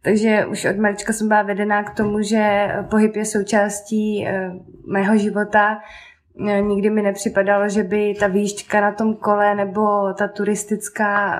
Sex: female